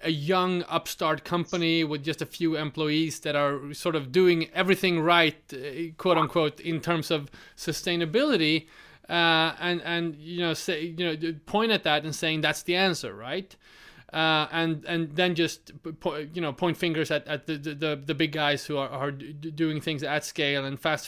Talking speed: 180 wpm